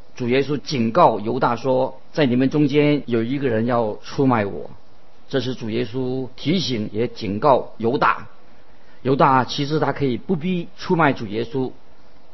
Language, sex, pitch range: Chinese, male, 120-150 Hz